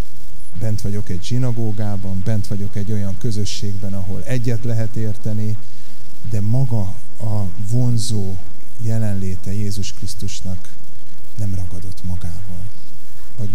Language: Hungarian